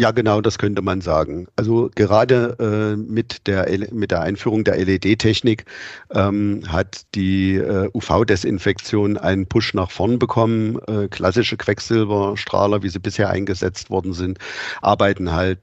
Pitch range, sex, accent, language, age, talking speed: 95-110 Hz, male, German, German, 50-69, 135 wpm